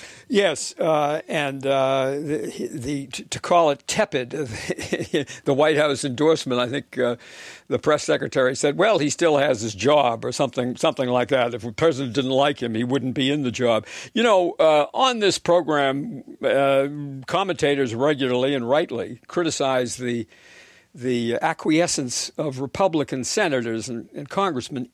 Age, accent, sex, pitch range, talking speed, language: 60-79, American, male, 130-160 Hz, 155 wpm, English